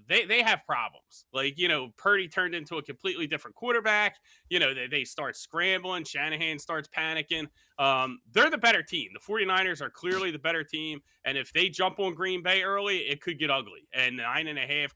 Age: 30-49